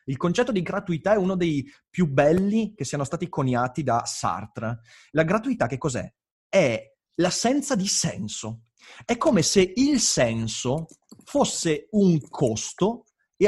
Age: 30-49